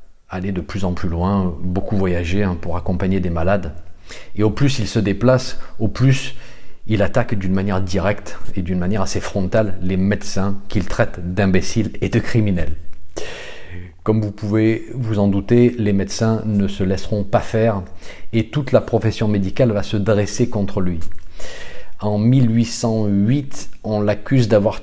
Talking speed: 160 wpm